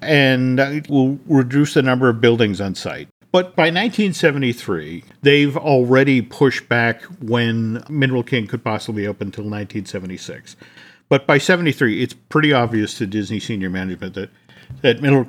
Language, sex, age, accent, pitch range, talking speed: English, male, 50-69, American, 115-145 Hz, 150 wpm